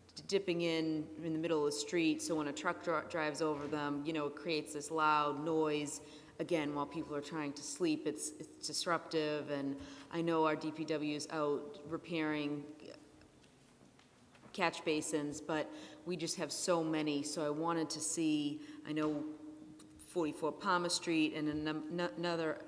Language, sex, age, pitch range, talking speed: English, female, 30-49, 140-160 Hz, 165 wpm